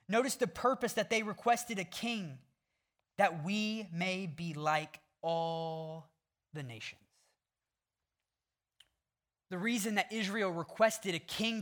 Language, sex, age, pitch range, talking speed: English, male, 20-39, 160-230 Hz, 120 wpm